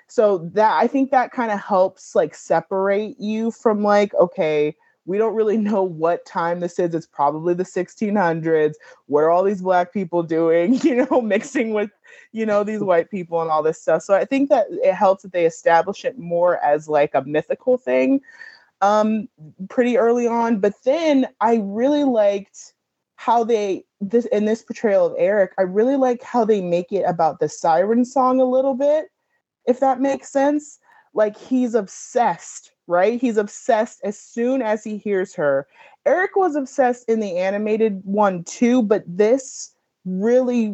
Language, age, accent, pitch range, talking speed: English, 30-49, American, 180-245 Hz, 175 wpm